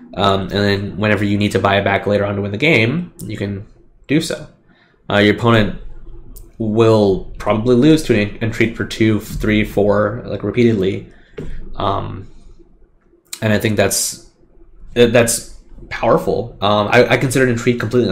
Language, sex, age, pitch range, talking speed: English, male, 20-39, 105-120 Hz, 160 wpm